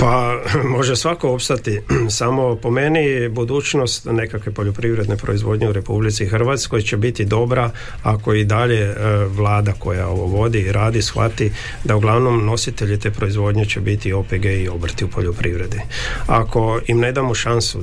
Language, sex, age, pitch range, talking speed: Croatian, male, 50-69, 105-120 Hz, 145 wpm